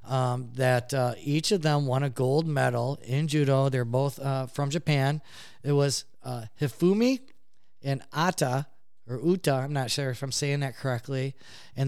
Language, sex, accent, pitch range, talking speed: English, male, American, 125-140 Hz, 170 wpm